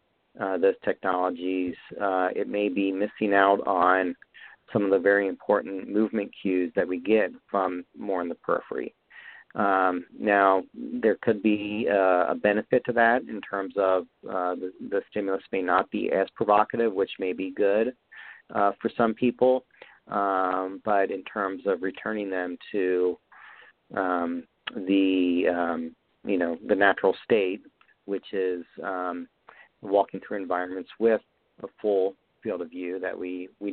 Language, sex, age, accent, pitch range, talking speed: English, male, 40-59, American, 95-105 Hz, 155 wpm